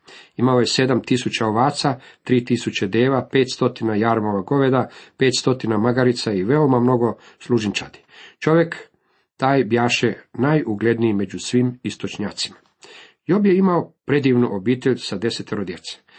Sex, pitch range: male, 115-130 Hz